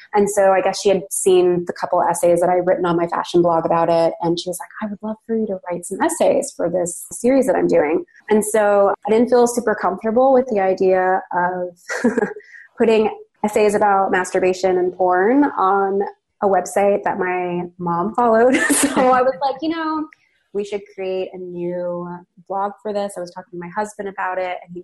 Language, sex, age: English, female, 20-39